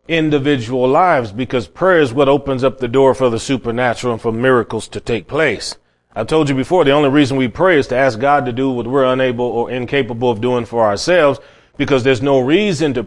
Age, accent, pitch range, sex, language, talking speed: 30-49, American, 110-140 Hz, male, English, 220 wpm